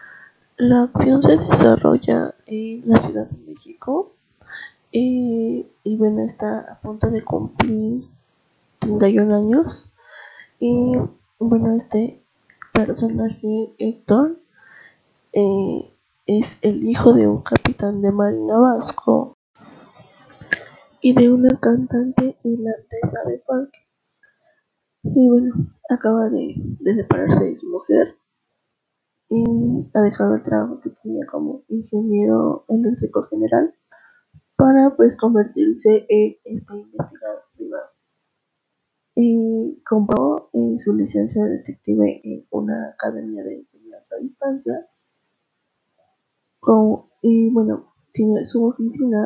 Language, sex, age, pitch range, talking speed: Spanish, female, 20-39, 200-250 Hz, 105 wpm